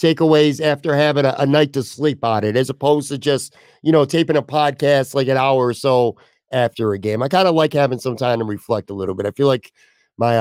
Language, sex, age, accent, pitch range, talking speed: English, male, 50-69, American, 110-140 Hz, 250 wpm